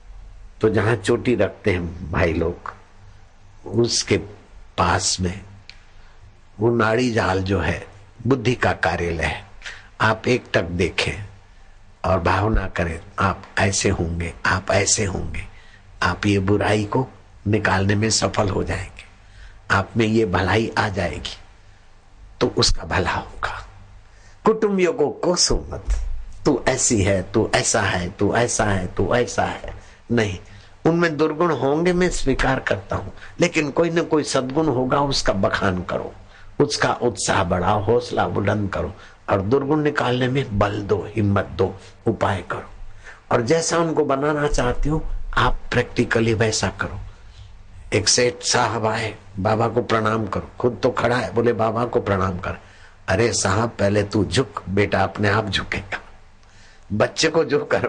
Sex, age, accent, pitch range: male, 60-79, native, 95-115 Hz